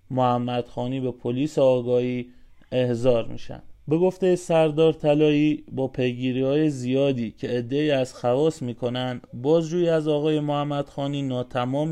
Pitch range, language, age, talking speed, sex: 125-150 Hz, Persian, 30-49, 130 wpm, male